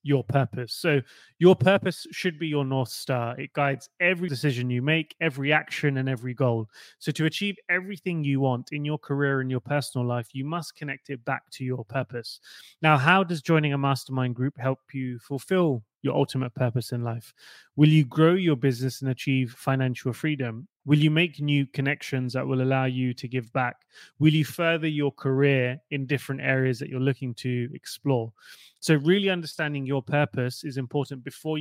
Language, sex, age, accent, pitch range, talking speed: English, male, 20-39, British, 130-150 Hz, 190 wpm